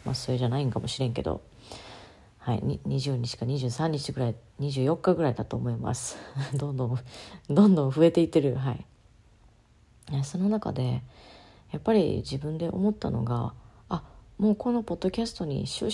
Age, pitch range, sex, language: 40-59, 125-160 Hz, female, Japanese